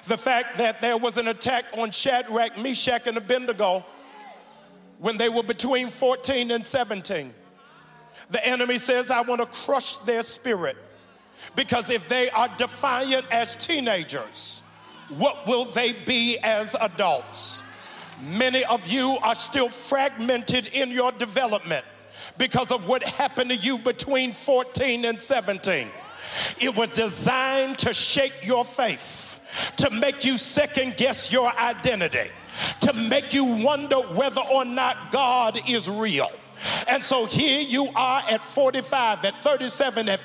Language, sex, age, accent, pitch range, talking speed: English, male, 50-69, American, 235-275 Hz, 140 wpm